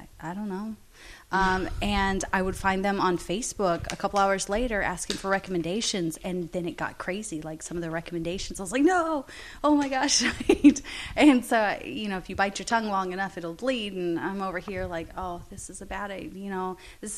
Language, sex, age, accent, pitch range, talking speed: English, female, 30-49, American, 170-205 Hz, 215 wpm